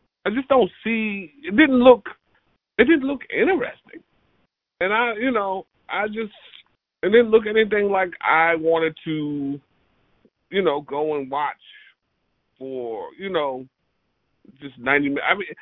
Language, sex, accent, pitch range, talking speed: English, male, American, 140-220 Hz, 145 wpm